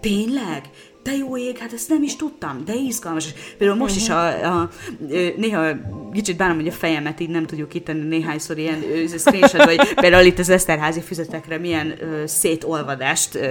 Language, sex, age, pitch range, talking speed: Hungarian, female, 30-49, 145-175 Hz, 180 wpm